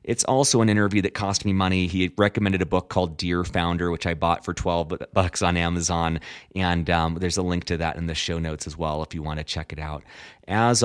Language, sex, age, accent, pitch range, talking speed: English, male, 30-49, American, 85-115 Hz, 245 wpm